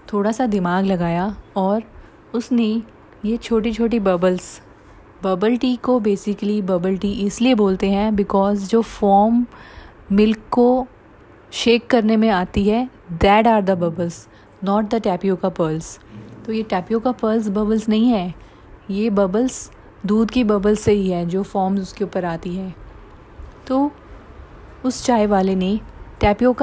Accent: native